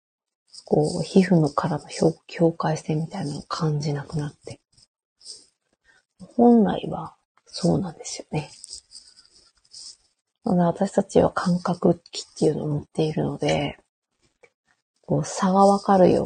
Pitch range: 155-210 Hz